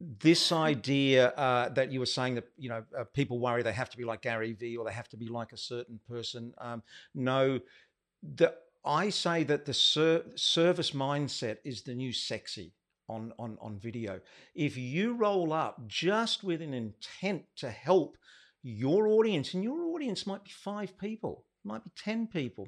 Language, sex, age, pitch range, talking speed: English, male, 50-69, 120-165 Hz, 185 wpm